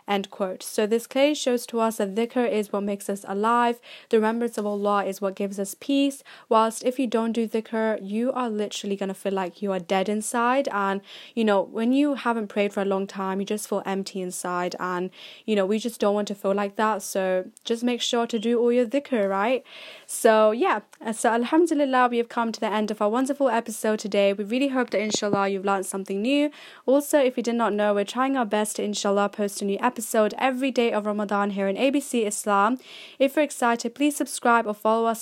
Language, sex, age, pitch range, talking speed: English, female, 10-29, 200-250 Hz, 230 wpm